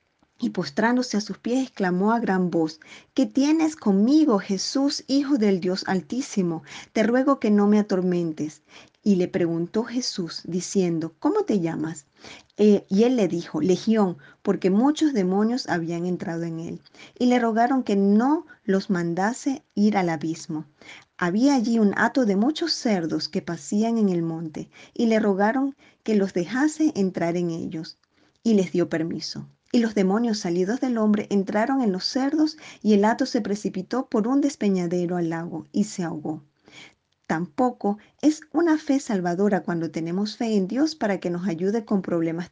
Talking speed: 165 wpm